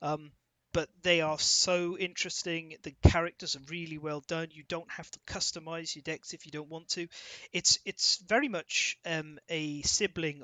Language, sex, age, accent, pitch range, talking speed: English, male, 30-49, British, 150-180 Hz, 180 wpm